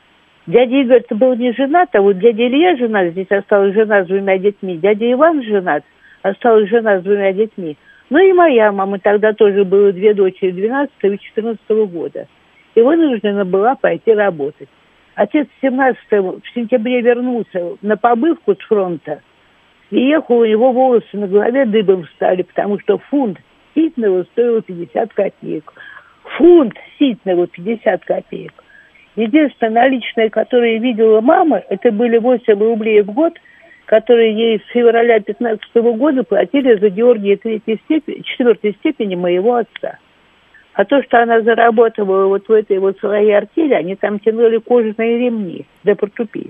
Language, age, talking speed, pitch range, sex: Russian, 50-69, 145 wpm, 205-250 Hz, female